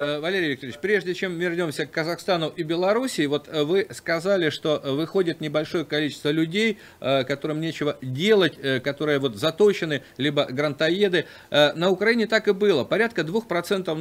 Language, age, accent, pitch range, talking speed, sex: Russian, 40-59, native, 150-200 Hz, 135 wpm, male